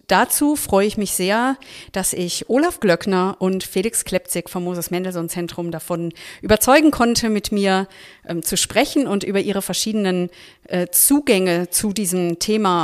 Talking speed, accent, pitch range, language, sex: 155 wpm, German, 170-205 Hz, German, female